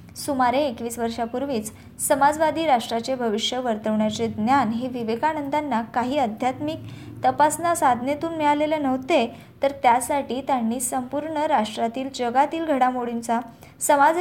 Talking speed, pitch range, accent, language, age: 100 wpm, 235-290 Hz, native, Marathi, 20-39